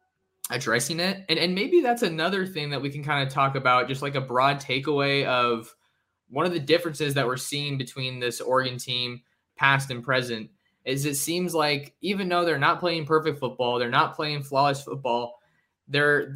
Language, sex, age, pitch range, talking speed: English, male, 20-39, 125-150 Hz, 190 wpm